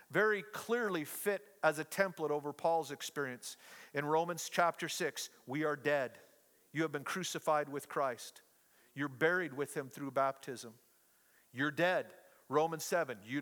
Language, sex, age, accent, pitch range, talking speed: English, male, 50-69, American, 140-180 Hz, 150 wpm